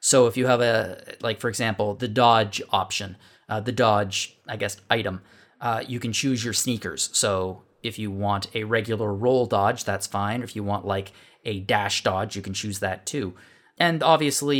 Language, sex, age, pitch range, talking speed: English, male, 20-39, 105-120 Hz, 195 wpm